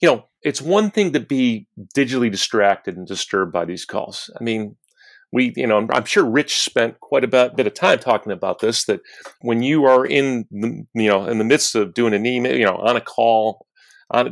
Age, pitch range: 40-59, 110-140 Hz